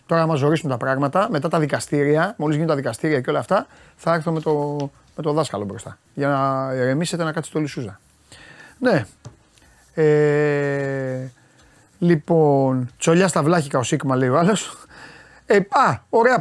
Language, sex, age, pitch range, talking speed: Greek, male, 30-49, 135-170 Hz, 155 wpm